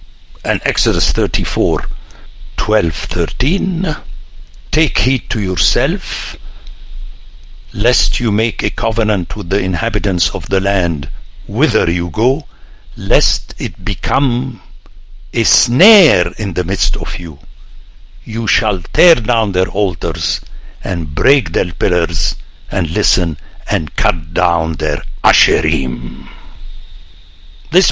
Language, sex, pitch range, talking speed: English, male, 85-125 Hz, 110 wpm